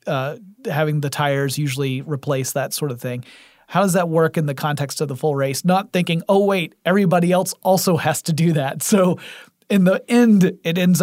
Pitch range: 145-190 Hz